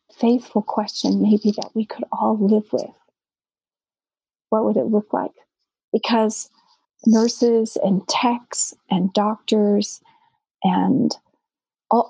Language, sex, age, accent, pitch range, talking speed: English, female, 40-59, American, 205-235 Hz, 110 wpm